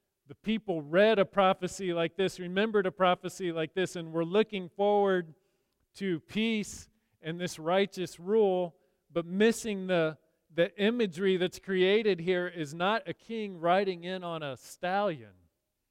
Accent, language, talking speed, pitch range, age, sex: American, English, 145 wpm, 145-190 Hz, 40-59, male